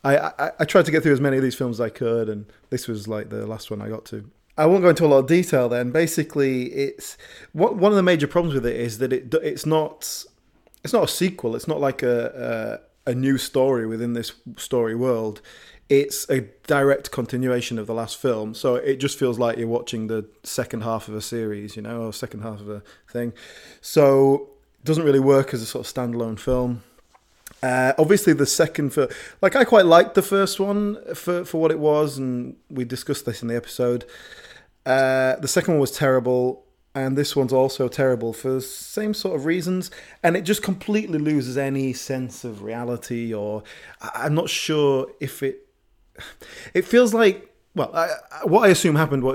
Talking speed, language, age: 210 wpm, English, 20-39